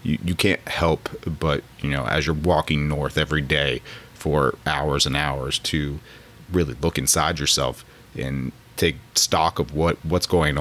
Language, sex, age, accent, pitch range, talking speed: English, male, 30-49, American, 70-85 Hz, 160 wpm